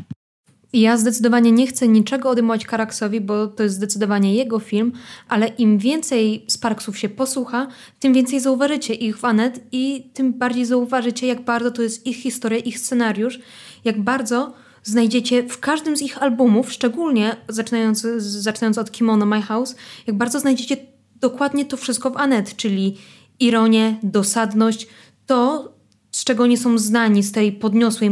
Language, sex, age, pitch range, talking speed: Polish, female, 20-39, 215-250 Hz, 155 wpm